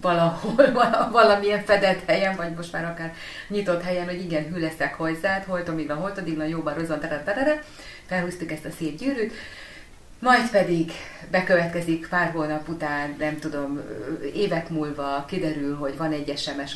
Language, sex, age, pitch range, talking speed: Hungarian, female, 30-49, 150-180 Hz, 150 wpm